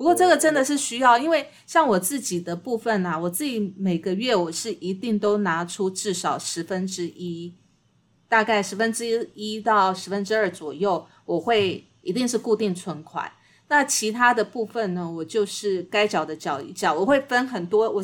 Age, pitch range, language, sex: 30-49, 180-235 Hz, Chinese, female